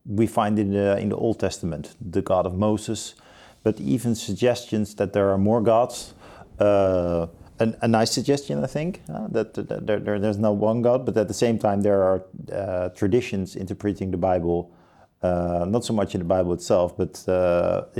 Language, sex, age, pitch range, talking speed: Dutch, male, 50-69, 95-120 Hz, 190 wpm